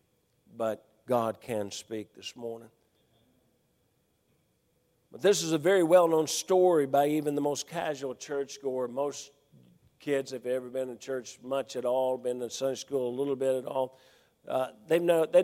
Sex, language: male, English